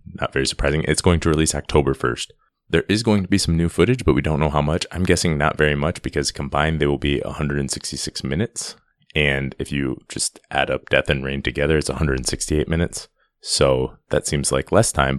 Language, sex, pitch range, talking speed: English, male, 65-75 Hz, 215 wpm